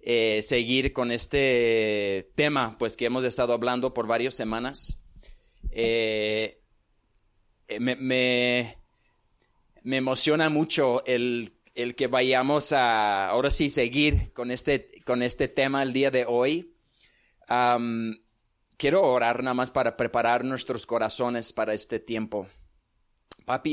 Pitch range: 115-135 Hz